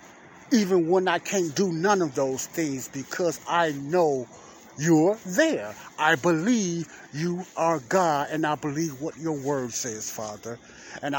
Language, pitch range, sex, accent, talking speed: English, 130-175 Hz, male, American, 150 wpm